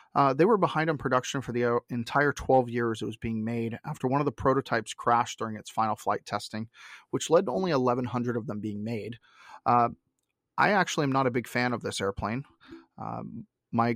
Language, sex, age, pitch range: English, male, 30-49, 115-135 Hz